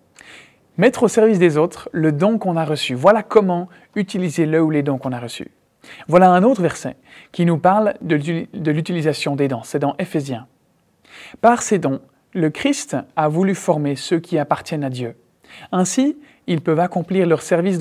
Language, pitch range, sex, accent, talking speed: French, 150-210 Hz, male, French, 190 wpm